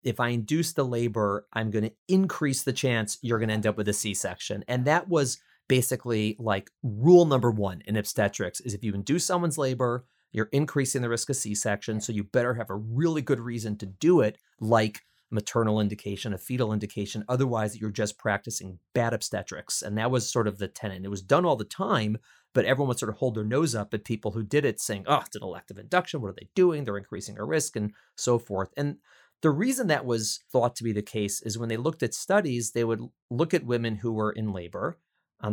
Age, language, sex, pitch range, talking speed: 30-49, English, male, 105-125 Hz, 225 wpm